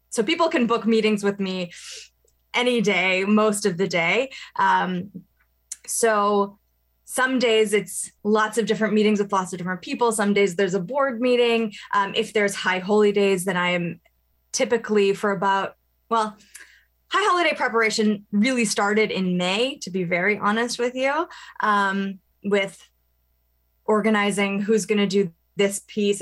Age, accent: 20-39, American